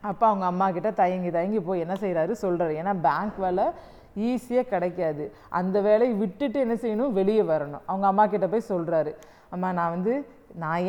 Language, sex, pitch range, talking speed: Tamil, female, 175-235 Hz, 160 wpm